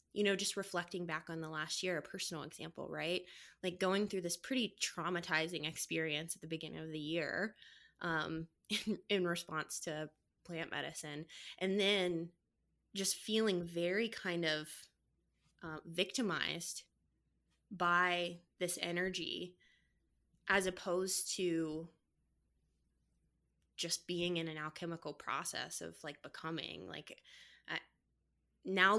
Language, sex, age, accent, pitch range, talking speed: English, female, 20-39, American, 160-190 Hz, 120 wpm